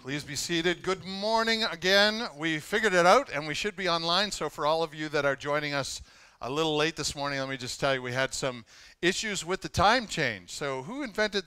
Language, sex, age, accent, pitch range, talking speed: English, male, 40-59, American, 135-180 Hz, 235 wpm